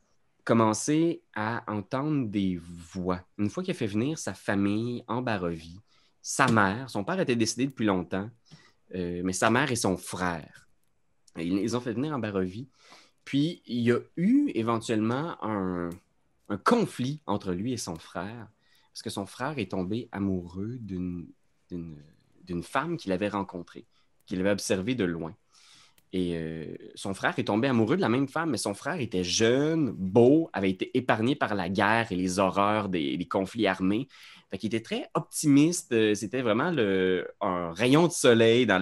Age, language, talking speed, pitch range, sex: 30-49, French, 175 wpm, 95-125 Hz, male